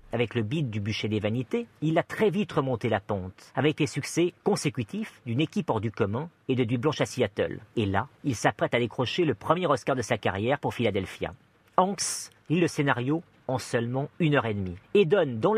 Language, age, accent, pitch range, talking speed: French, 40-59, French, 115-155 Hz, 215 wpm